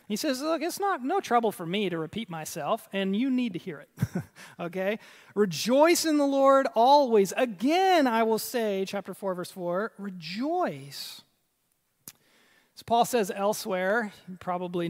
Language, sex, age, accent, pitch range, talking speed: English, male, 30-49, American, 180-230 Hz, 155 wpm